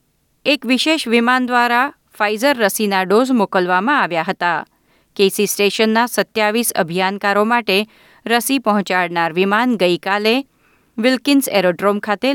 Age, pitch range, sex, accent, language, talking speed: 30-49, 185-240 Hz, female, native, Gujarati, 105 wpm